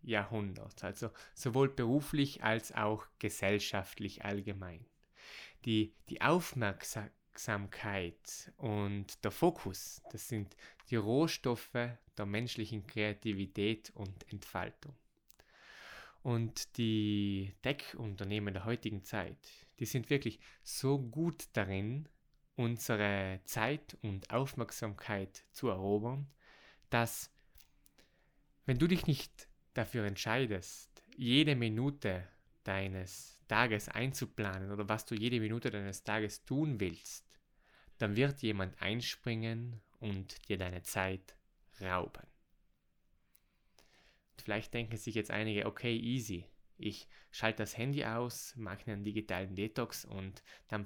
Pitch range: 100-120 Hz